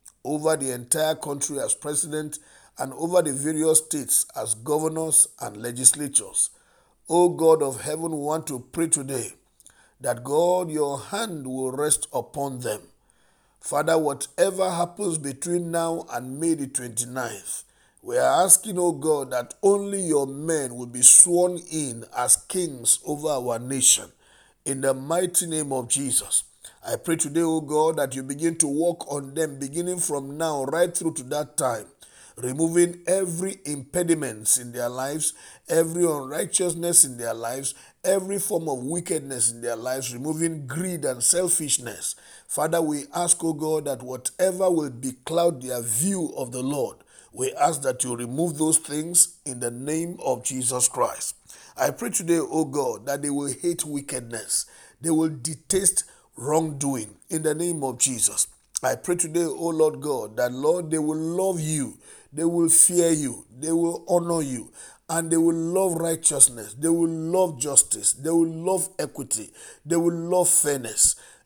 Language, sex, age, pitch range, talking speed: English, male, 50-69, 135-170 Hz, 160 wpm